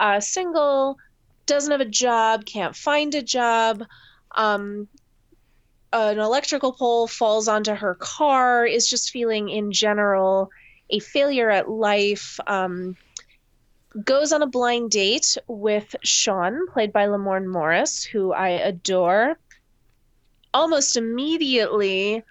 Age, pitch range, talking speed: 20-39, 205-265 Hz, 120 wpm